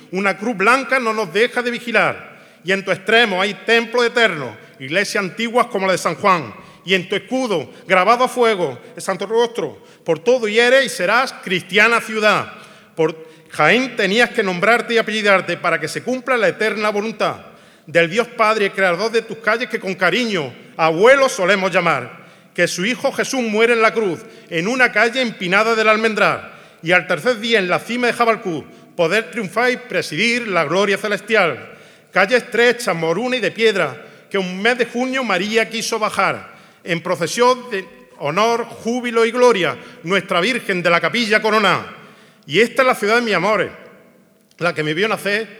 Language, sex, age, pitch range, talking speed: Spanish, male, 40-59, 180-230 Hz, 180 wpm